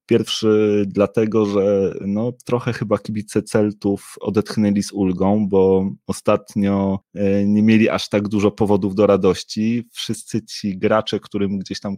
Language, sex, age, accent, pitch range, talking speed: Polish, male, 20-39, native, 95-105 Hz, 135 wpm